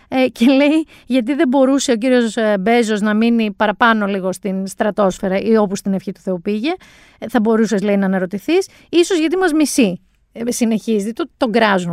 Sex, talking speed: female, 170 wpm